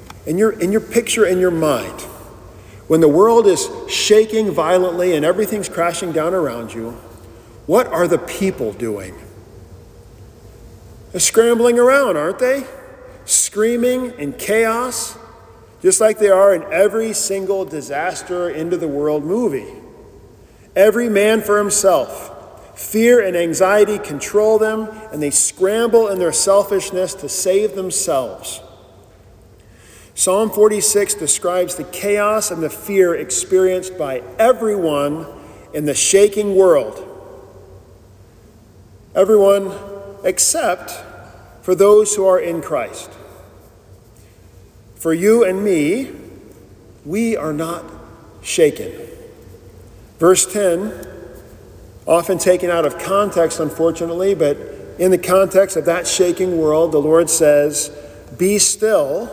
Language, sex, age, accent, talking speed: English, male, 40-59, American, 115 wpm